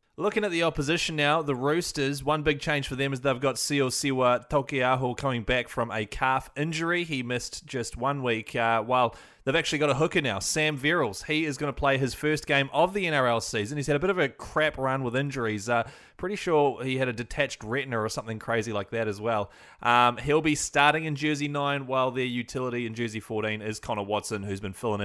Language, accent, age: English, Australian, 20-39